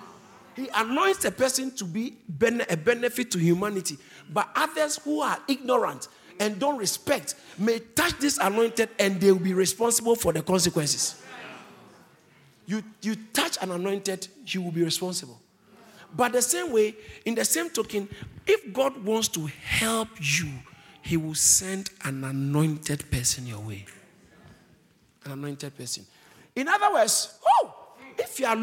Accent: Nigerian